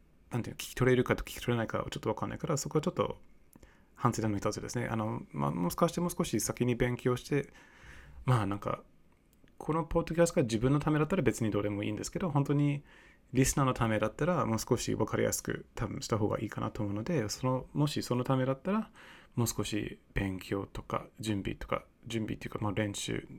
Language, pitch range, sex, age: Japanese, 105-140 Hz, male, 20-39